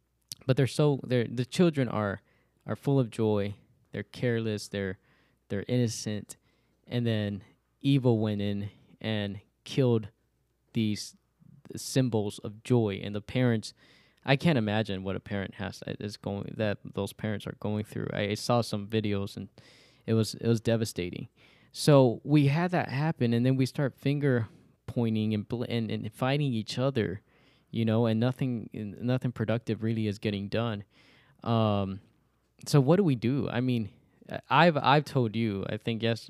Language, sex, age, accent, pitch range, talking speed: English, male, 10-29, American, 105-130 Hz, 165 wpm